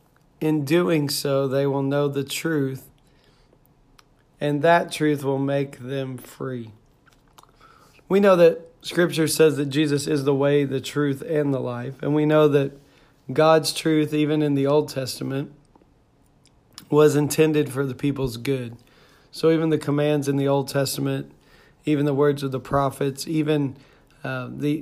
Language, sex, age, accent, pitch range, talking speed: English, male, 40-59, American, 135-150 Hz, 155 wpm